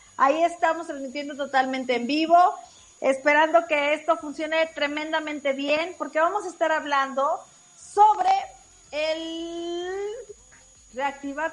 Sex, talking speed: female, 105 wpm